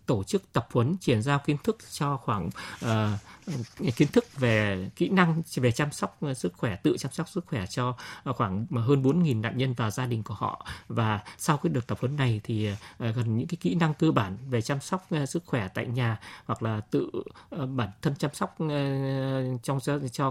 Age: 20-39